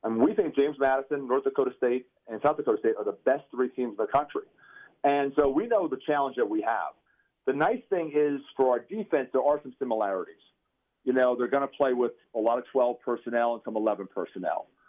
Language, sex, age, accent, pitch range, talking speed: English, male, 40-59, American, 115-150 Hz, 235 wpm